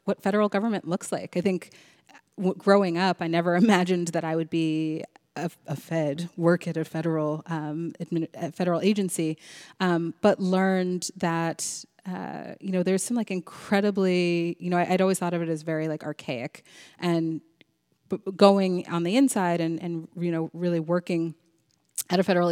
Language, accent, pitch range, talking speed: English, American, 160-185 Hz, 180 wpm